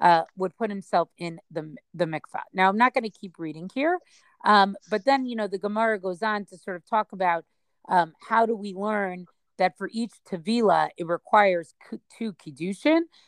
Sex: female